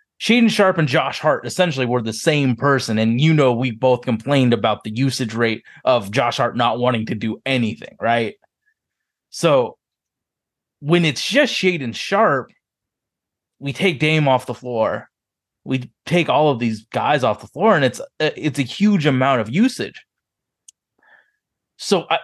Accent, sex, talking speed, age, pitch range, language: American, male, 160 wpm, 20-39, 120-160 Hz, English